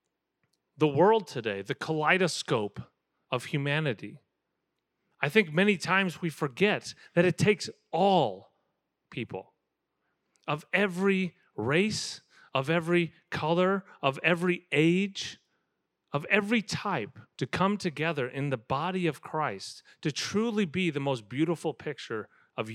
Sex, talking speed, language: male, 120 wpm, English